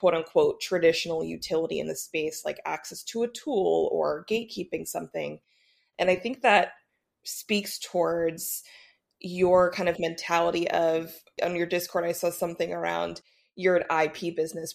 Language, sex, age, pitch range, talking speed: English, female, 20-39, 165-190 Hz, 140 wpm